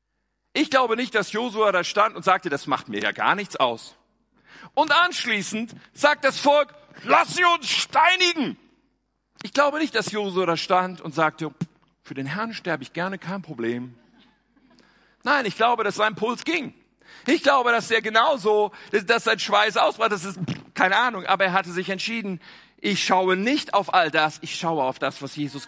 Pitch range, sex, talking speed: 185-270 Hz, male, 185 wpm